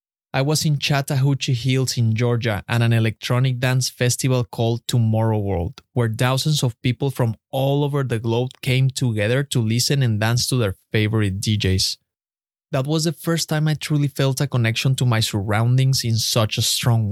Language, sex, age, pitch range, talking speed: English, male, 20-39, 115-135 Hz, 180 wpm